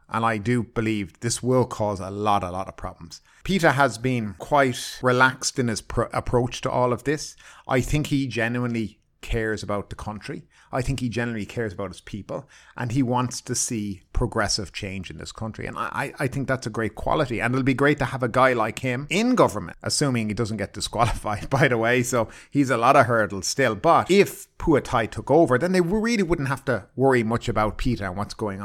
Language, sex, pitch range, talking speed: English, male, 105-130 Hz, 220 wpm